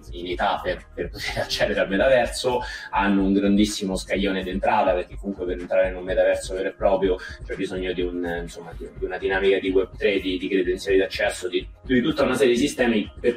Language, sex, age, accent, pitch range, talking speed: Italian, male, 30-49, native, 85-105 Hz, 200 wpm